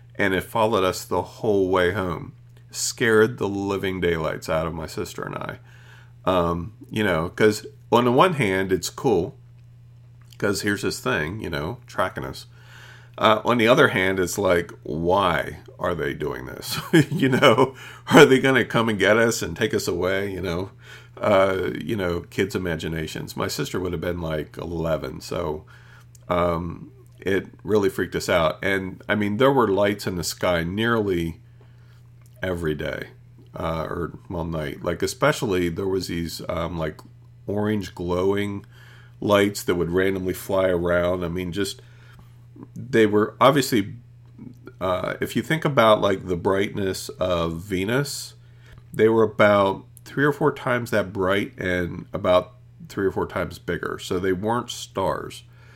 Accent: American